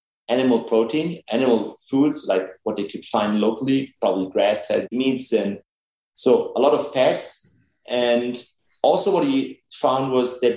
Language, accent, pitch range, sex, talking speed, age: English, German, 120-155 Hz, male, 150 wpm, 30-49